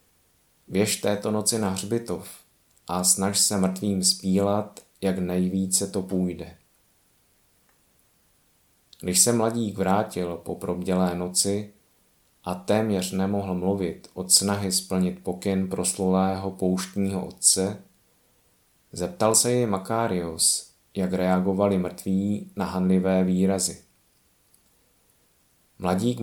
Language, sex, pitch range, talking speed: Czech, male, 90-105 Hz, 100 wpm